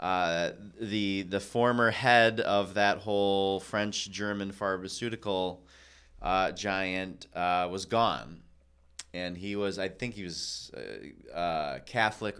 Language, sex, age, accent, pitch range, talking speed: English, male, 30-49, American, 90-110 Hz, 120 wpm